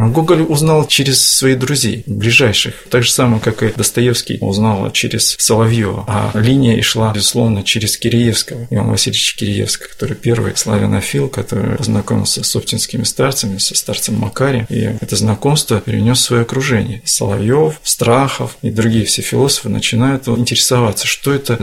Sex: male